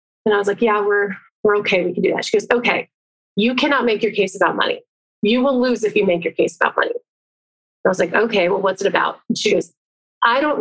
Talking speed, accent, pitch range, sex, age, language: 255 wpm, American, 195-245 Hz, female, 30-49, English